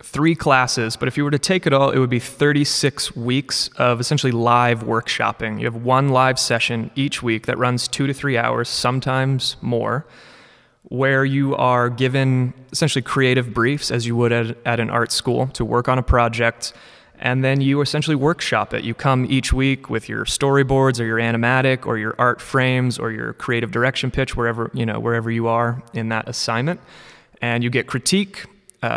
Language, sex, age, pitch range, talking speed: English, male, 30-49, 115-135 Hz, 190 wpm